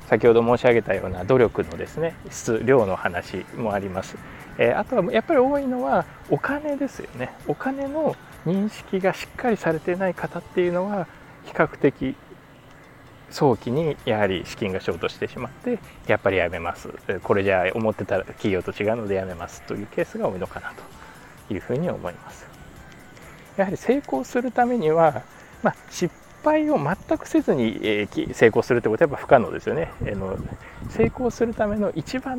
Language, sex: Japanese, male